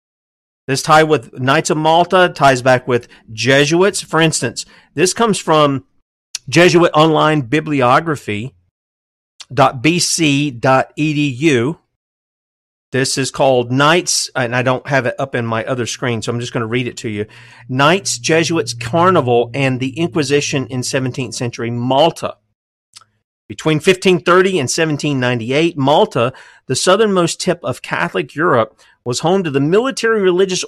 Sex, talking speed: male, 135 wpm